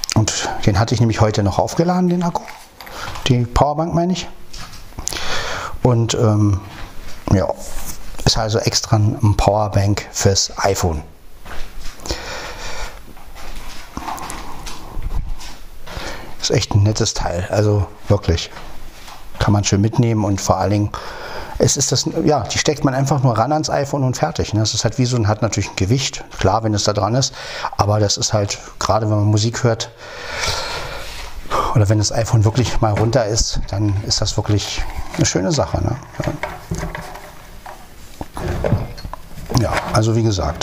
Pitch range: 100-120 Hz